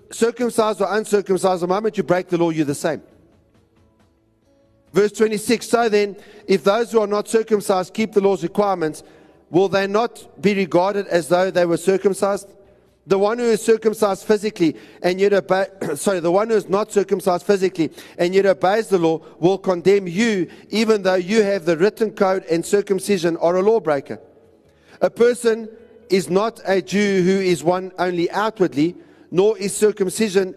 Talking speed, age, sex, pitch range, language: 170 wpm, 50-69, male, 175-210 Hz, English